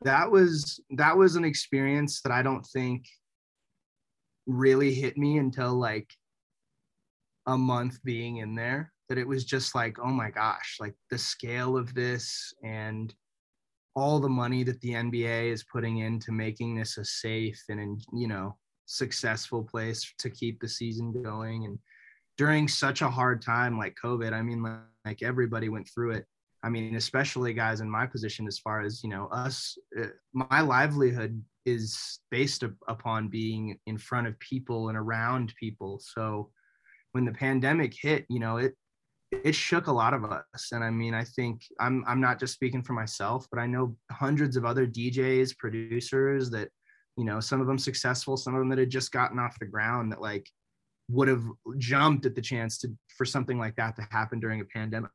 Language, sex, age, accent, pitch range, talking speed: English, male, 20-39, American, 110-130 Hz, 185 wpm